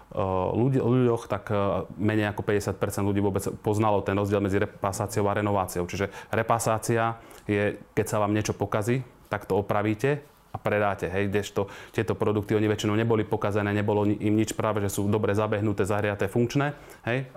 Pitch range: 105-115 Hz